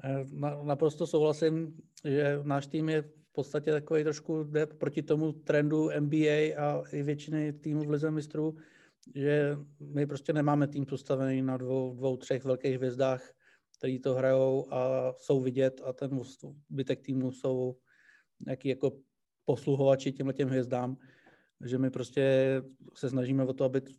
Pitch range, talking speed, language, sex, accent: 130-145 Hz, 145 wpm, Czech, male, native